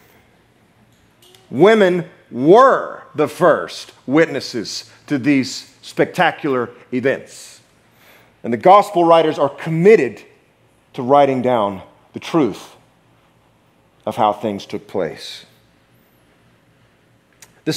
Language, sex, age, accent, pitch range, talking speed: English, male, 40-59, American, 115-190 Hz, 90 wpm